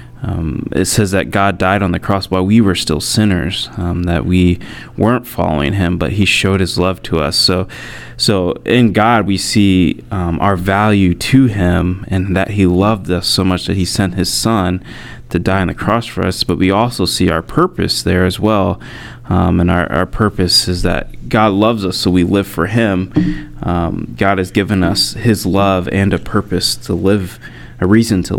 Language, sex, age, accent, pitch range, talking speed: English, male, 30-49, American, 90-115 Hz, 205 wpm